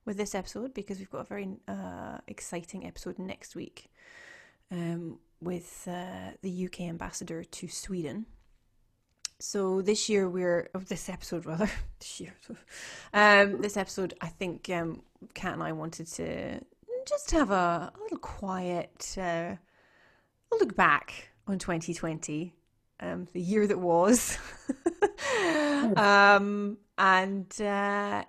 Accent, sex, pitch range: British, female, 170-210 Hz